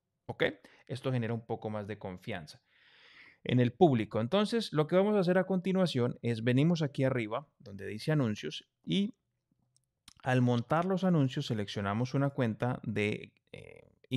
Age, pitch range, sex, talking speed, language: 30-49, 110-145 Hz, male, 155 wpm, Spanish